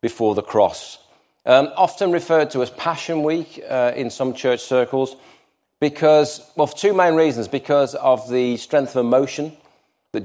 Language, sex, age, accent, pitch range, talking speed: English, male, 40-59, British, 105-130 Hz, 165 wpm